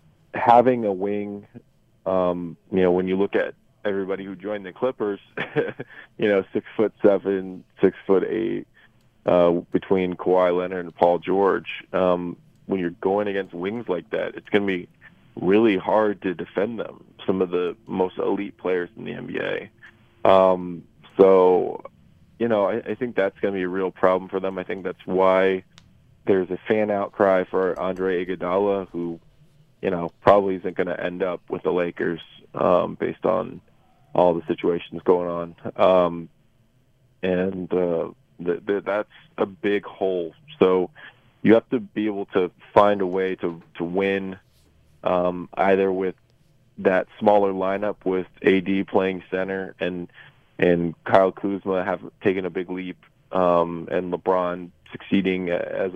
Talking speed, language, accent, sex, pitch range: 160 wpm, English, American, male, 90-100 Hz